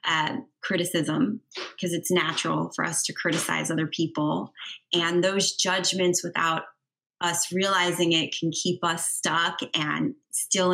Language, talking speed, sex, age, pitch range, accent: English, 135 wpm, female, 20-39, 170-220 Hz, American